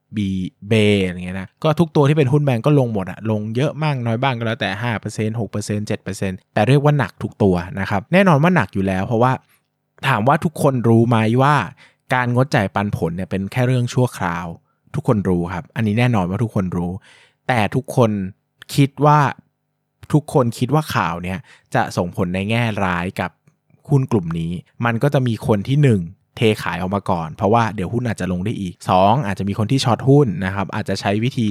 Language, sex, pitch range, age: Thai, male, 95-130 Hz, 20-39